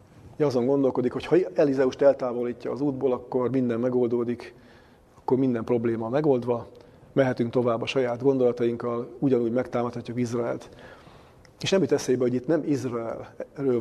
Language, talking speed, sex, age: Hungarian, 140 wpm, male, 30-49